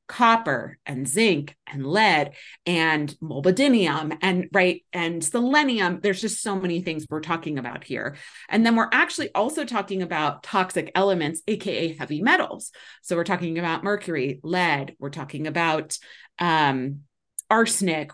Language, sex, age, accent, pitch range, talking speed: English, female, 30-49, American, 155-215 Hz, 140 wpm